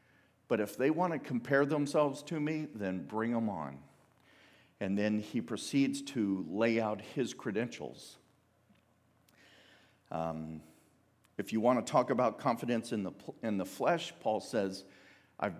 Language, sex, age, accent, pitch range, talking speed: English, male, 50-69, American, 100-125 Hz, 145 wpm